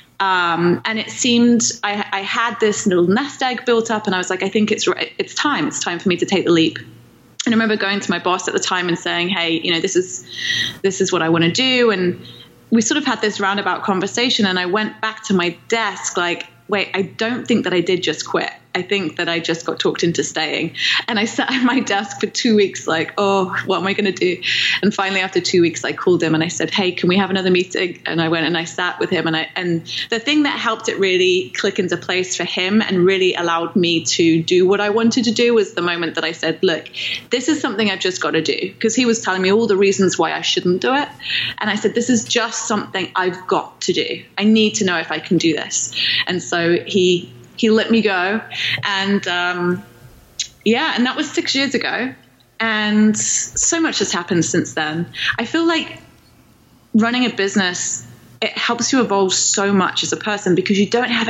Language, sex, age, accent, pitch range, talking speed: English, female, 20-39, British, 180-225 Hz, 240 wpm